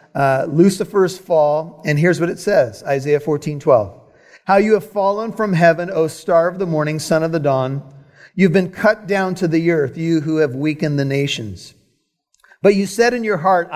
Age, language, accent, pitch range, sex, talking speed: 40-59, English, American, 140-185 Hz, male, 195 wpm